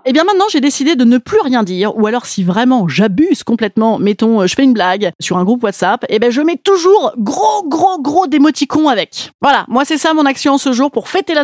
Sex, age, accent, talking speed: female, 30-49, French, 245 wpm